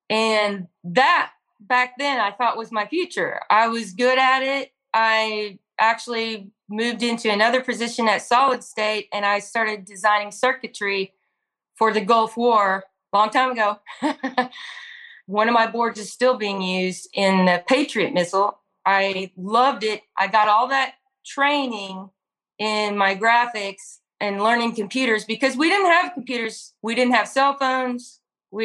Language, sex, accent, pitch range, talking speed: English, female, American, 200-245 Hz, 155 wpm